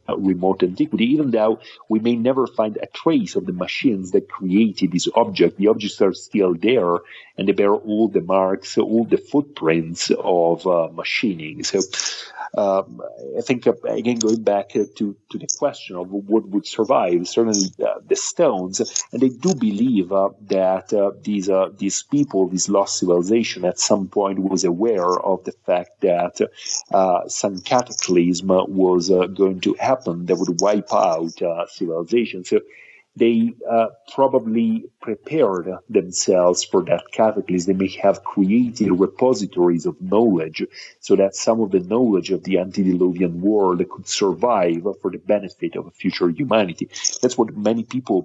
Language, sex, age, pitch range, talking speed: English, male, 40-59, 90-115 Hz, 165 wpm